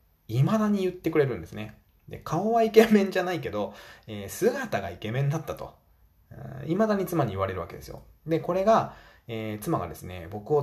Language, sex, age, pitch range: Japanese, male, 20-39, 95-160 Hz